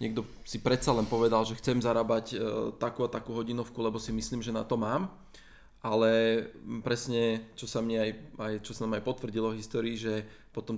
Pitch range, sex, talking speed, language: 115-130 Hz, male, 195 wpm, Slovak